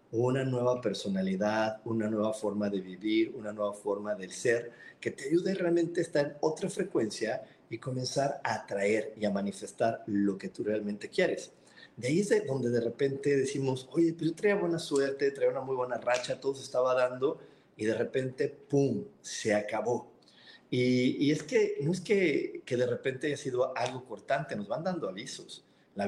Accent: Mexican